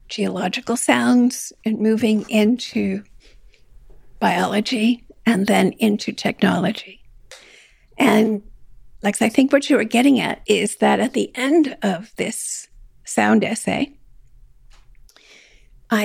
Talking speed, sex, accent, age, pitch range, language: 110 wpm, female, American, 50-69, 205-245 Hz, English